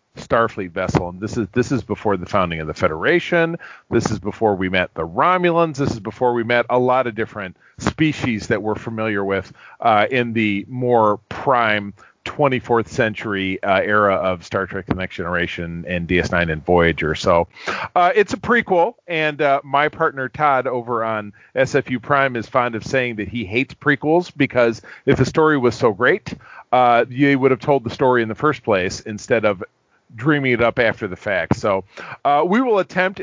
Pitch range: 105-140 Hz